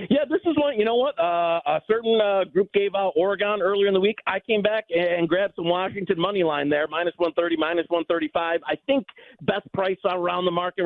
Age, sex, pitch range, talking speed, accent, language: 40-59, male, 155-195 Hz, 220 wpm, American, English